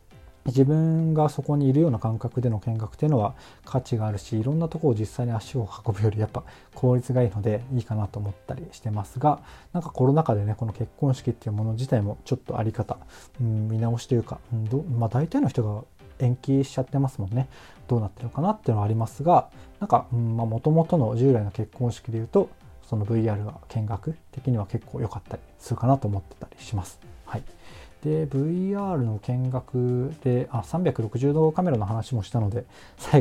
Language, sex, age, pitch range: Japanese, male, 20-39, 110-135 Hz